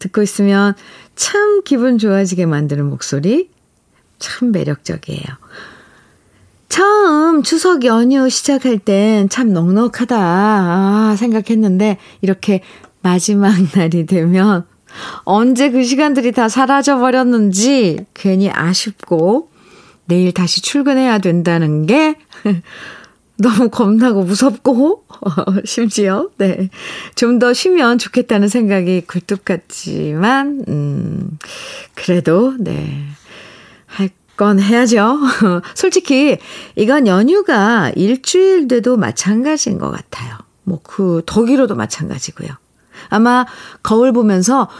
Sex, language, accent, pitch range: female, Korean, native, 190-255 Hz